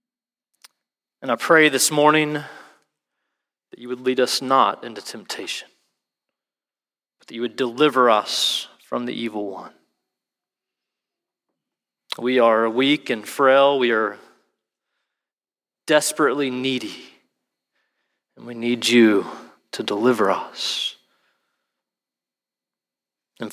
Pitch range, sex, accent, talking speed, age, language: 115-140 Hz, male, American, 100 wpm, 30-49, English